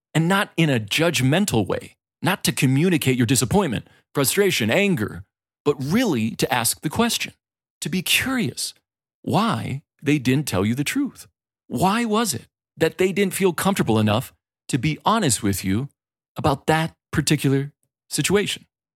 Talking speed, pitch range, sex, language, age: 150 wpm, 115-160 Hz, male, English, 40-59